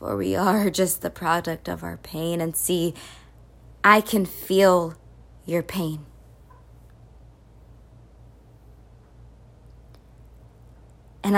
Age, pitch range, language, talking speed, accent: 20-39, 185-275 Hz, English, 90 wpm, American